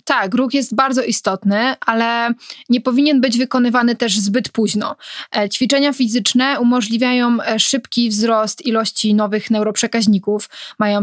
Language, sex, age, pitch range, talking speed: Polish, female, 20-39, 210-250 Hz, 120 wpm